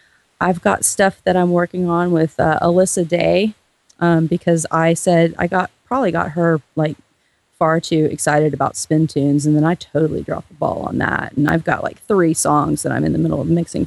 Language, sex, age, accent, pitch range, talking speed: English, female, 30-49, American, 155-175 Hz, 210 wpm